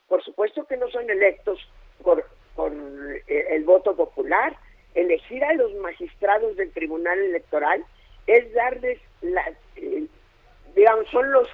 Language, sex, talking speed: Spanish, female, 130 wpm